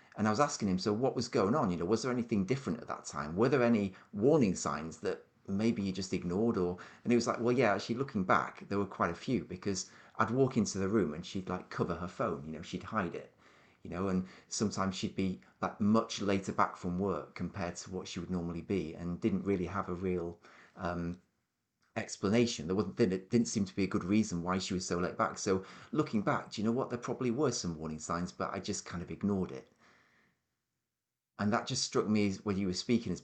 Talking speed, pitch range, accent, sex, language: 240 wpm, 90-115 Hz, British, male, English